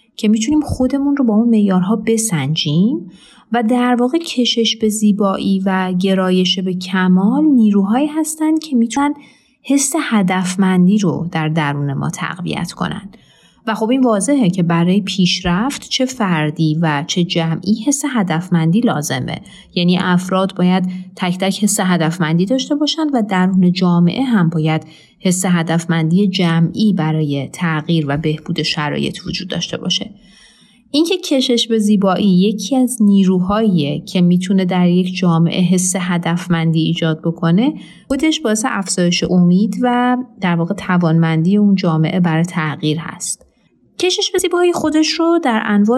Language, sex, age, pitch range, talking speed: Persian, female, 30-49, 175-230 Hz, 140 wpm